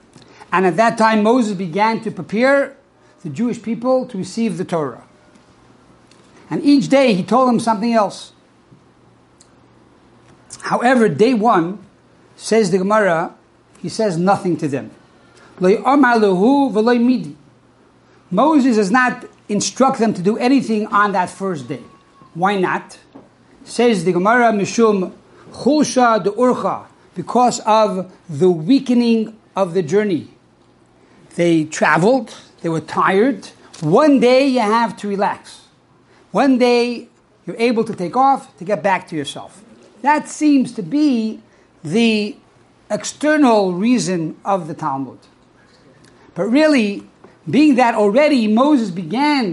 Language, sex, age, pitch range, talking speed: English, male, 60-79, 190-255 Hz, 120 wpm